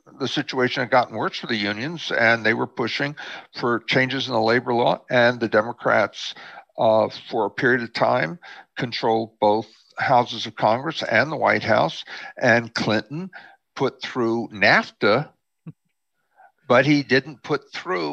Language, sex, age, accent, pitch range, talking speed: English, male, 60-79, American, 115-160 Hz, 150 wpm